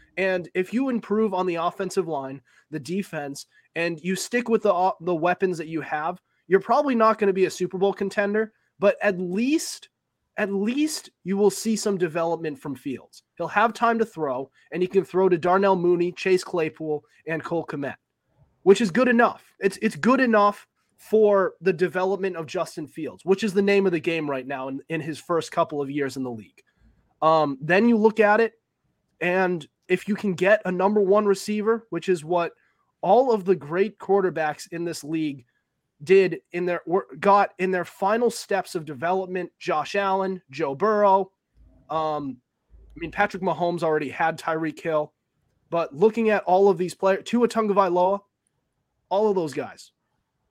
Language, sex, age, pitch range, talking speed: English, male, 20-39, 160-200 Hz, 185 wpm